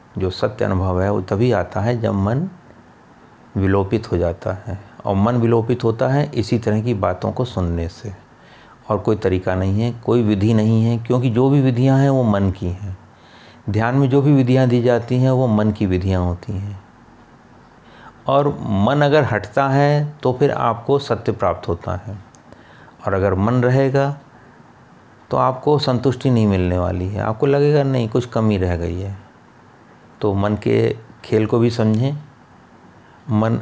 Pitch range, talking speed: 100-125 Hz, 175 wpm